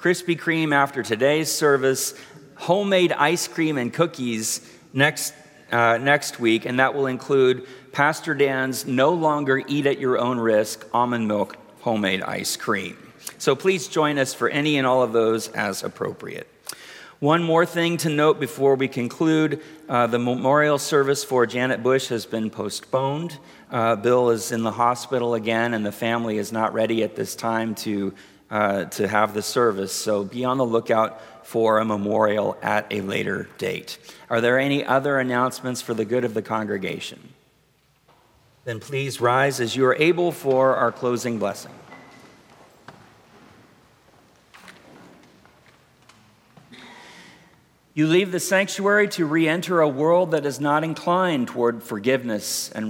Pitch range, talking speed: 115-145 Hz, 150 wpm